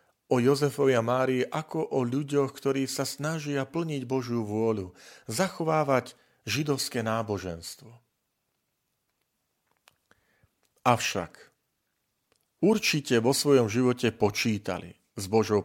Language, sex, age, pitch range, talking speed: Slovak, male, 40-59, 105-135 Hz, 90 wpm